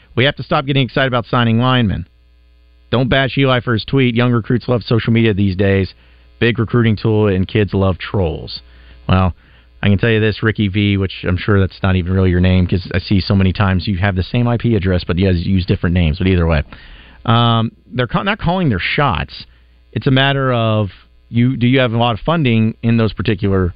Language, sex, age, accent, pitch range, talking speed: English, male, 40-59, American, 85-120 Hz, 225 wpm